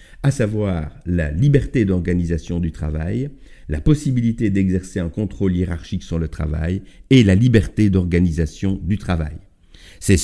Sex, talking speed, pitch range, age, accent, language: male, 135 wpm, 85-105 Hz, 50-69, French, French